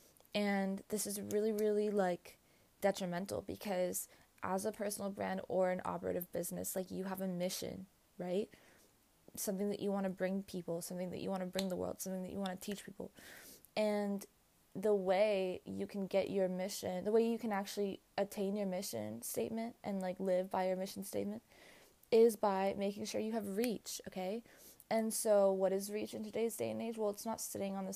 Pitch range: 185-215 Hz